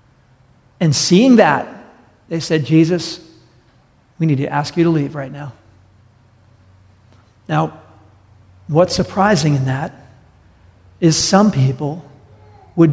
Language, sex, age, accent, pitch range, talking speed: English, male, 50-69, American, 150-195 Hz, 110 wpm